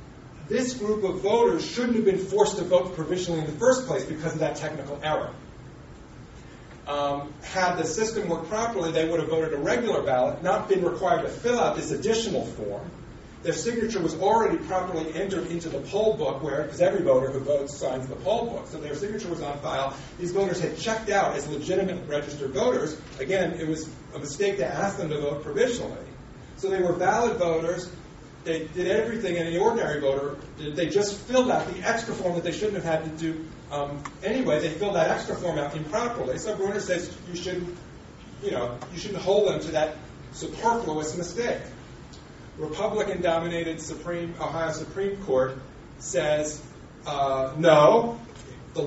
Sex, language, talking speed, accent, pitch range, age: male, English, 180 wpm, American, 155-195 Hz, 40-59